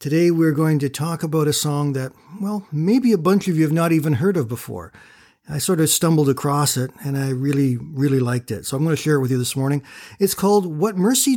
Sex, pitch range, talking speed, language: male, 130-160 Hz, 250 wpm, English